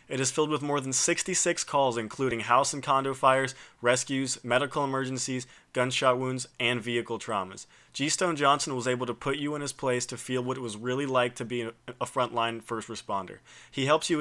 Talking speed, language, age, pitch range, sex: 200 wpm, English, 20-39, 120-135 Hz, male